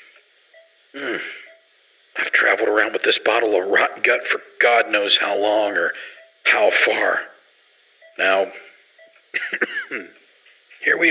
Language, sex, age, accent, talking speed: English, male, 50-69, American, 115 wpm